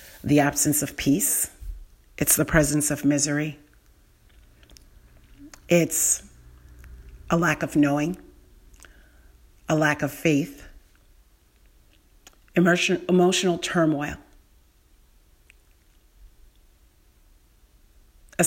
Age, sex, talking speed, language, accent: 40-59, female, 70 wpm, English, American